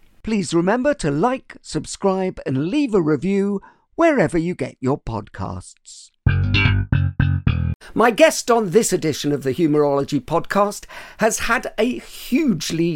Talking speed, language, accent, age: 125 wpm, English, British, 50-69